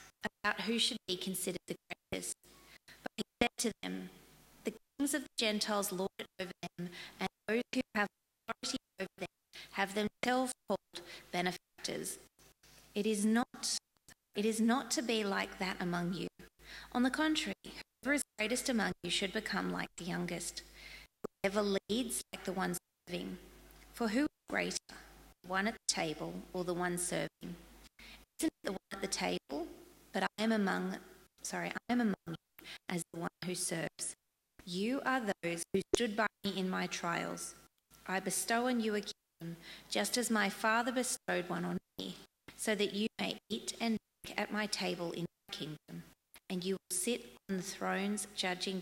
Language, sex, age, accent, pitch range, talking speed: English, female, 30-49, Australian, 180-230 Hz, 175 wpm